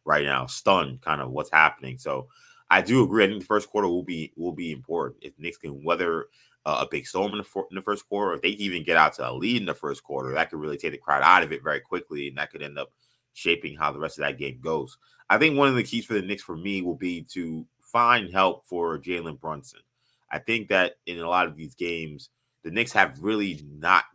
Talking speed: 260 wpm